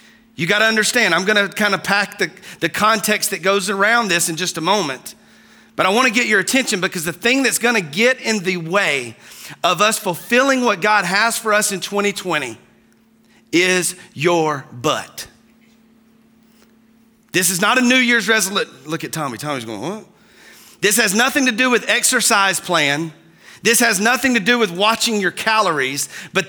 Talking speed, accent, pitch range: 175 wpm, American, 195-235 Hz